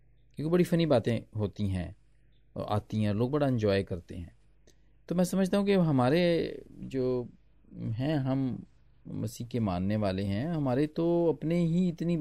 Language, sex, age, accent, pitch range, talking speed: Hindi, male, 40-59, native, 105-145 Hz, 160 wpm